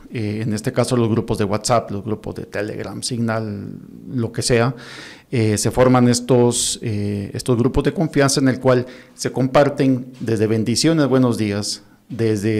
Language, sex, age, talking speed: Spanish, male, 50-69, 165 wpm